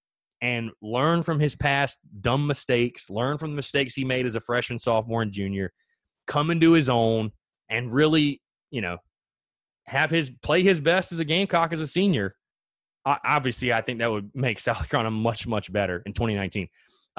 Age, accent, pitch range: 20-39, American, 115-165 Hz